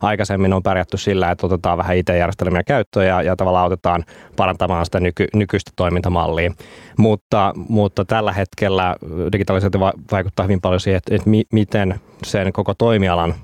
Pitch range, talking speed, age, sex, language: 90-105 Hz, 155 wpm, 20-39, male, Finnish